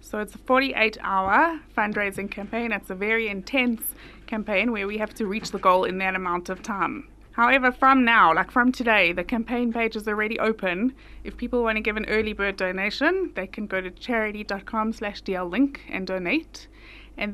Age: 20-39